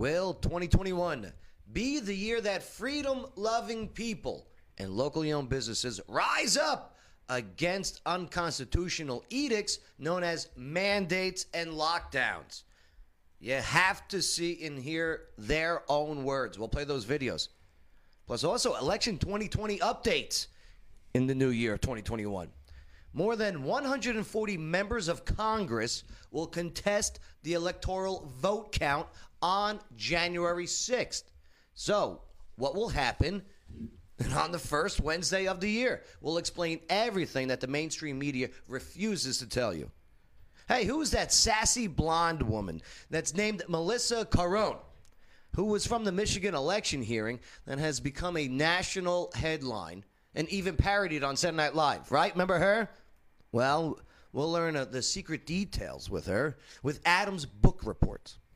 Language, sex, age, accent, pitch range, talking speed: English, male, 30-49, American, 125-195 Hz, 130 wpm